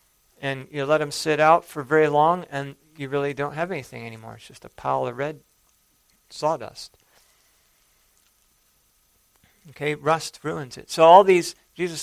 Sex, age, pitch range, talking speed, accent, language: male, 50-69, 125-155 Hz, 155 wpm, American, English